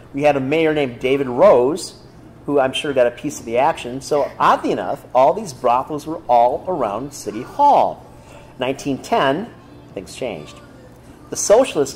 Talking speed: 160 wpm